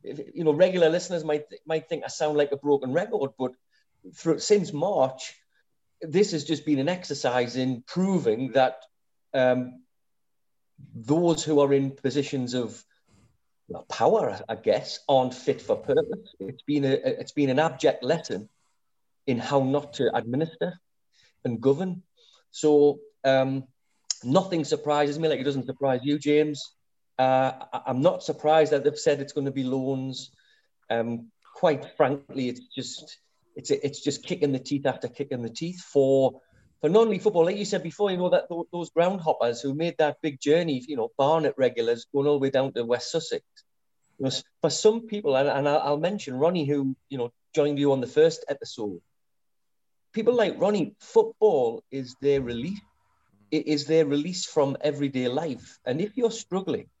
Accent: British